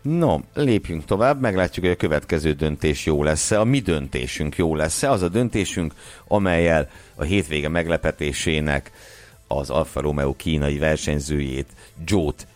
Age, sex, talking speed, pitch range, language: 60-79, male, 135 wpm, 75-100 Hz, Hungarian